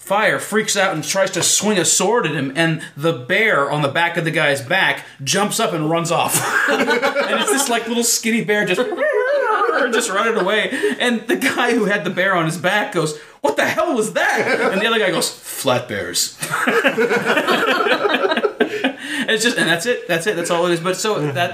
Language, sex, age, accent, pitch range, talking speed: English, male, 30-49, American, 130-170 Hz, 205 wpm